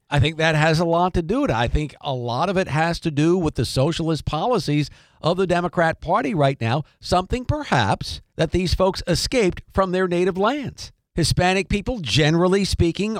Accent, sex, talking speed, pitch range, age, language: American, male, 195 wpm, 145-190 Hz, 50-69, English